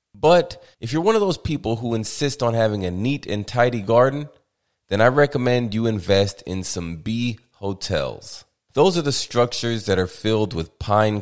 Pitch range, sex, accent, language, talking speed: 95-125 Hz, male, American, English, 180 wpm